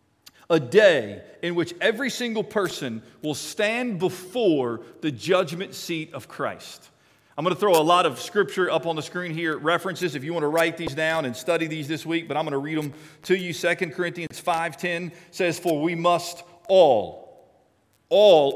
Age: 40-59